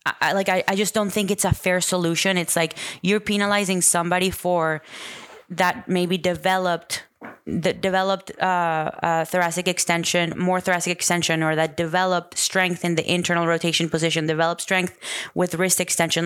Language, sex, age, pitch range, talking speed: English, female, 20-39, 160-180 Hz, 160 wpm